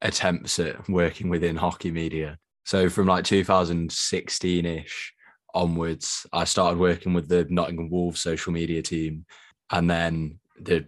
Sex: male